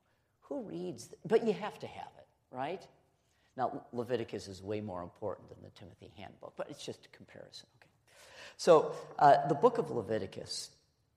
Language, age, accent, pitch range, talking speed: English, 50-69, American, 110-165 Hz, 170 wpm